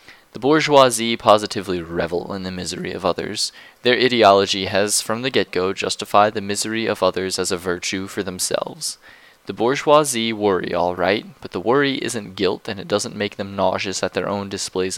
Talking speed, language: 180 wpm, English